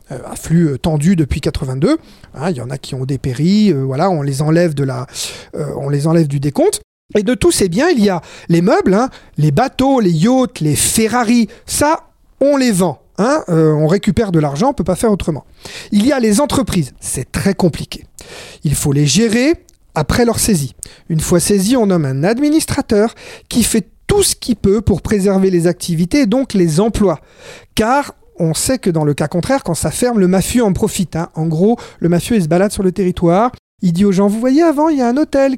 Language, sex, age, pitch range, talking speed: French, male, 40-59, 170-235 Hz, 220 wpm